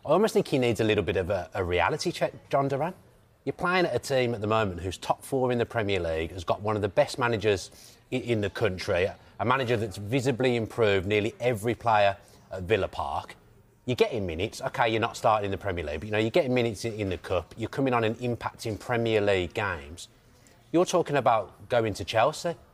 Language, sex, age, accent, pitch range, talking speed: English, male, 30-49, British, 100-125 Hz, 225 wpm